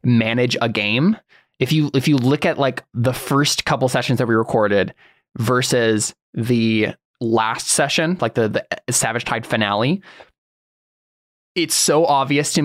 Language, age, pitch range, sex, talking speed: English, 20-39, 115-140 Hz, male, 145 wpm